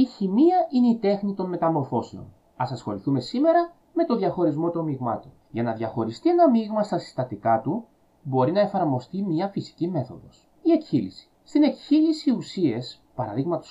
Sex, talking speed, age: male, 155 wpm, 30-49